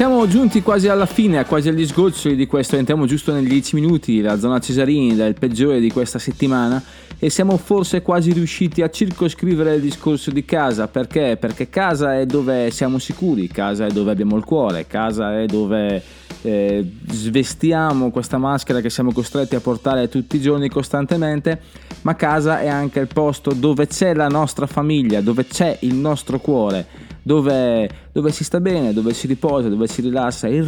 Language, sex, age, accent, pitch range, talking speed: Italian, male, 20-39, native, 115-150 Hz, 180 wpm